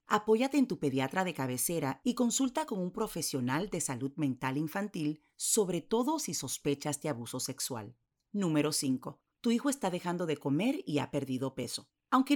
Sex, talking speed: female, 170 wpm